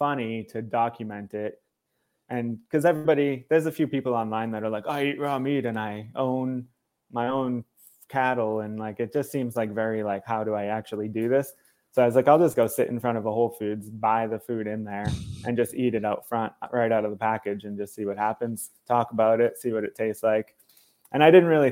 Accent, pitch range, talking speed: American, 110-130 Hz, 240 wpm